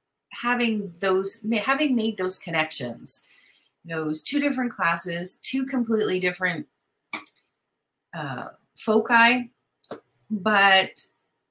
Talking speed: 95 wpm